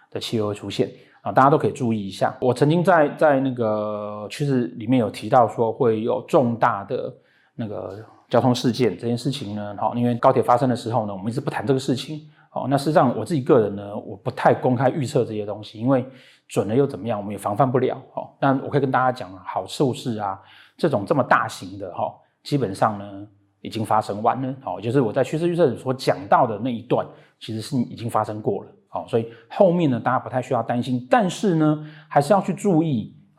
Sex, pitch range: male, 110-145 Hz